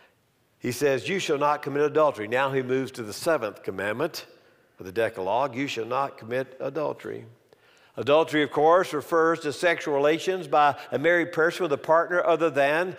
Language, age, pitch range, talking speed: English, 50-69, 135-180 Hz, 175 wpm